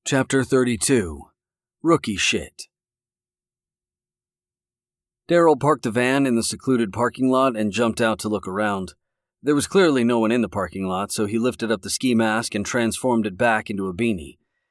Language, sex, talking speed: English, male, 170 wpm